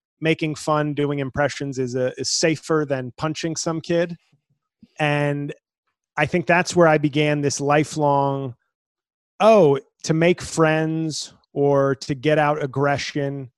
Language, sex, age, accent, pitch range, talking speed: English, male, 30-49, American, 135-155 Hz, 135 wpm